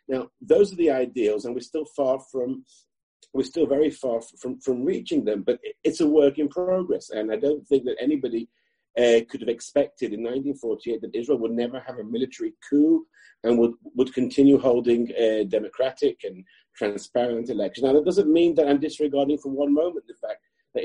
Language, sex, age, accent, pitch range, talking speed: English, male, 40-59, British, 120-185 Hz, 225 wpm